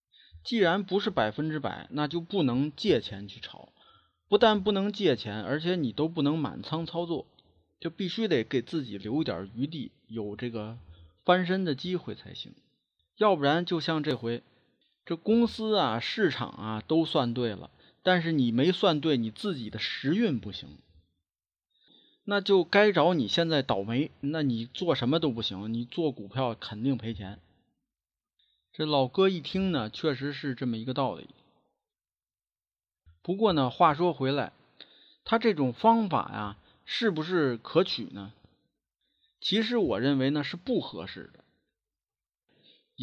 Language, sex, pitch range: Chinese, male, 105-170 Hz